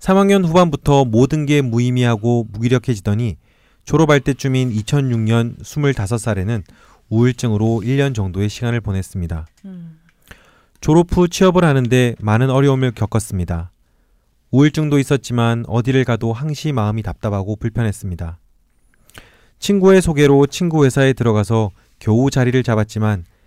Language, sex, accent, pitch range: Korean, male, native, 105-145 Hz